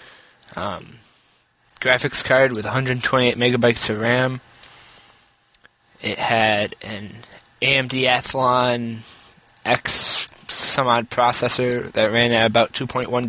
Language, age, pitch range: English, 20-39, 115-145 Hz